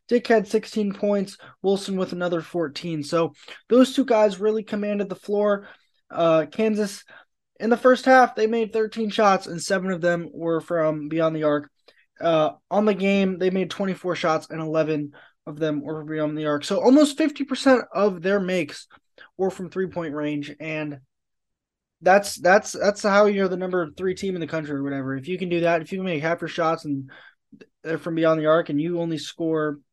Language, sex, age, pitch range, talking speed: English, male, 20-39, 160-200 Hz, 195 wpm